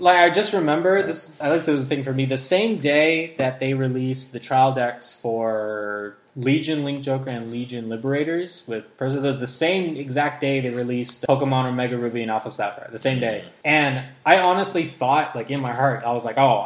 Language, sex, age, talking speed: English, male, 10-29, 210 wpm